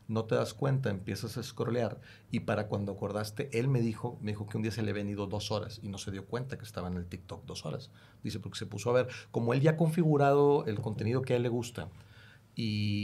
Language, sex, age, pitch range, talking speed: Spanish, male, 40-59, 105-125 Hz, 260 wpm